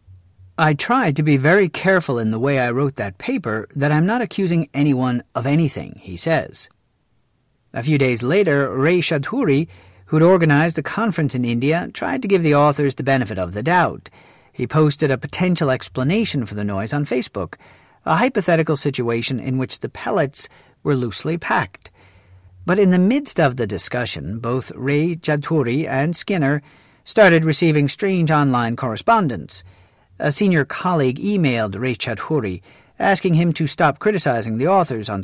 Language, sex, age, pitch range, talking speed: English, male, 40-59, 125-160 Hz, 160 wpm